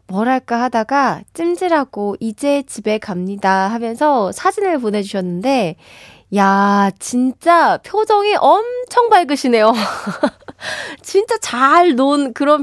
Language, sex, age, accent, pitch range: Korean, female, 20-39, native, 200-300 Hz